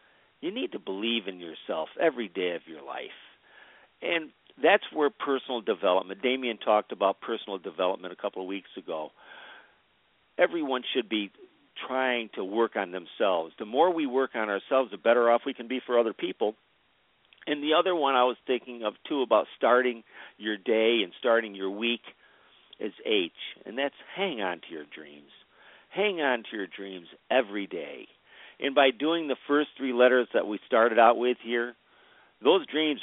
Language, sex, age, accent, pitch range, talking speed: English, male, 50-69, American, 110-145 Hz, 175 wpm